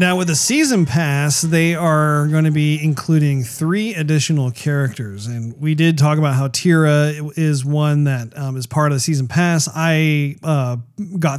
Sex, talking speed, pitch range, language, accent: male, 180 wpm, 140-170 Hz, English, American